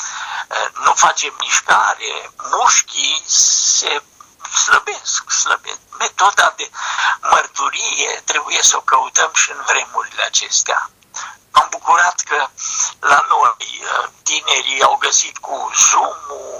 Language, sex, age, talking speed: Romanian, male, 60-79, 100 wpm